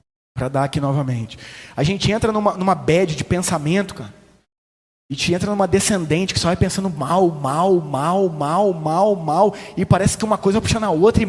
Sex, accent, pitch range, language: male, Brazilian, 185-290 Hz, Portuguese